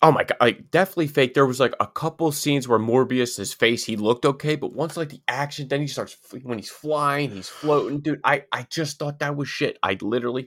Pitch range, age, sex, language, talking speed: 100-140 Hz, 20-39, male, English, 240 wpm